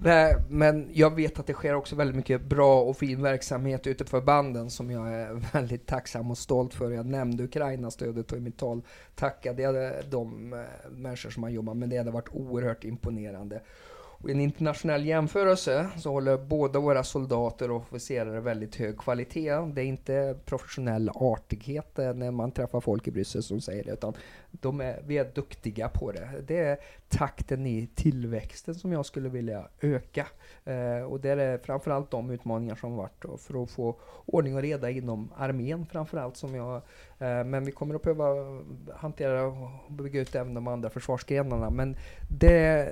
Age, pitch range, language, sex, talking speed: 30-49, 120-145 Hz, Swedish, male, 180 wpm